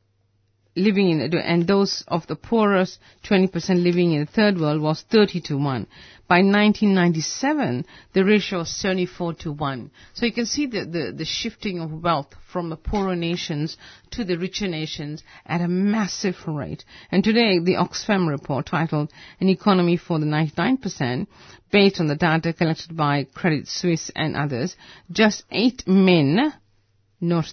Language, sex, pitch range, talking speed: English, female, 155-195 Hz, 155 wpm